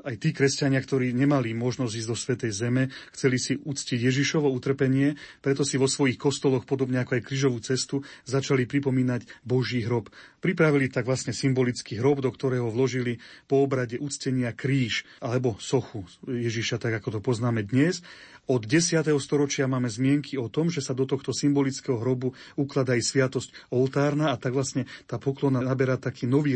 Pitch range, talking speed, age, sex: 120-140 Hz, 165 wpm, 40-59, male